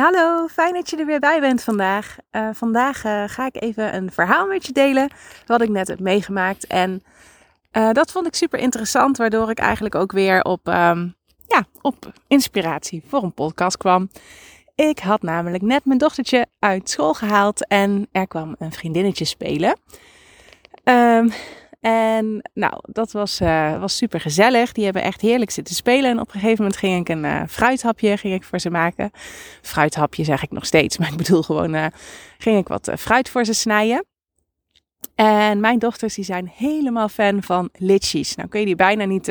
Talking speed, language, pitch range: 185 wpm, Dutch, 185-245 Hz